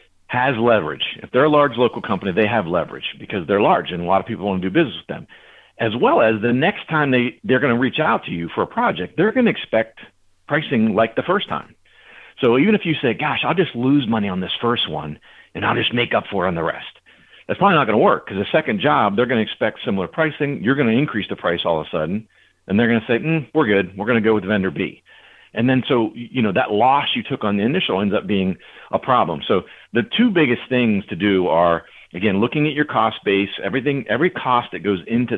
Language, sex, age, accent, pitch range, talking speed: English, male, 50-69, American, 100-145 Hz, 260 wpm